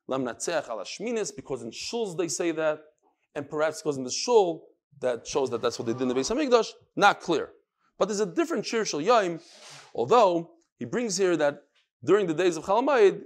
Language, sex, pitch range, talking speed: English, male, 150-220 Hz, 185 wpm